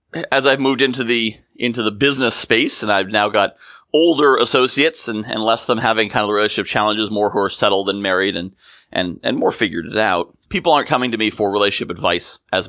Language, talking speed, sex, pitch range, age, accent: English, 225 wpm, male, 105-135 Hz, 30-49, American